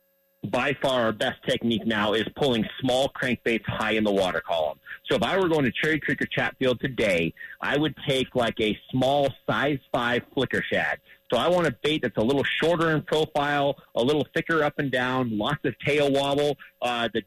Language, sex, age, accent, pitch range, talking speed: English, male, 30-49, American, 120-150 Hz, 205 wpm